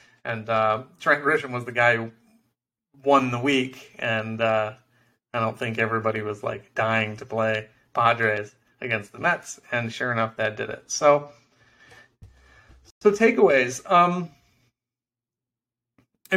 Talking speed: 135 wpm